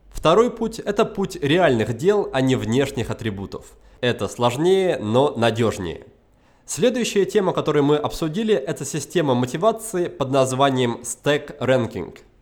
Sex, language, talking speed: male, Russian, 130 wpm